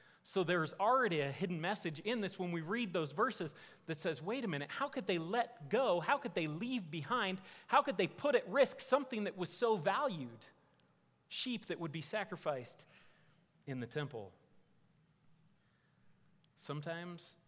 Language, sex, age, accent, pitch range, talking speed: English, male, 30-49, American, 135-175 Hz, 165 wpm